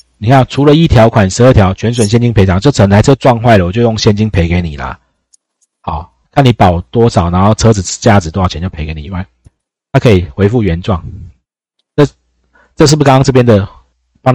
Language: Chinese